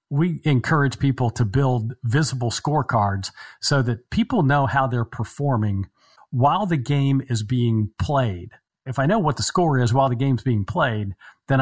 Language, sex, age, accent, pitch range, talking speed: English, male, 50-69, American, 115-140 Hz, 170 wpm